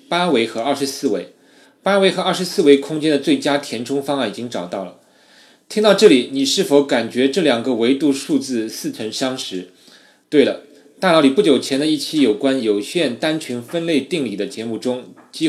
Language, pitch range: Chinese, 120-165 Hz